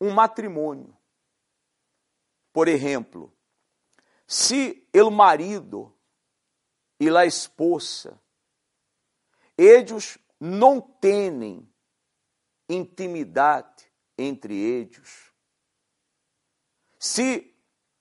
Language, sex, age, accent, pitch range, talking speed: Spanish, male, 50-69, Brazilian, 170-275 Hz, 55 wpm